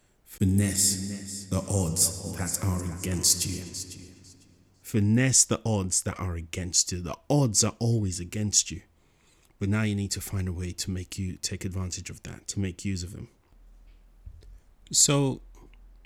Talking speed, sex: 155 wpm, male